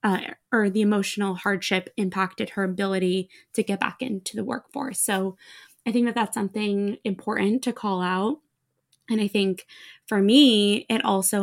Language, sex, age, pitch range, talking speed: English, female, 20-39, 195-225 Hz, 165 wpm